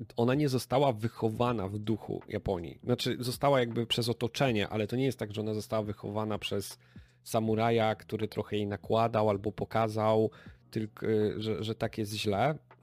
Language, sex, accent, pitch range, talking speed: Polish, male, native, 105-120 Hz, 165 wpm